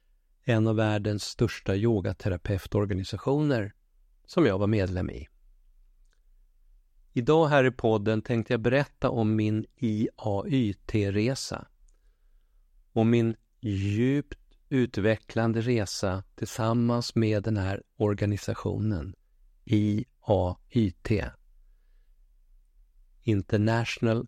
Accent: native